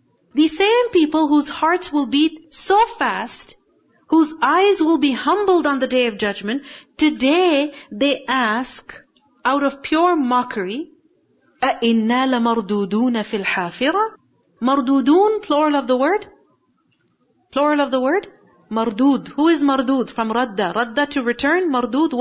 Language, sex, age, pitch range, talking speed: English, female, 40-59, 240-315 Hz, 130 wpm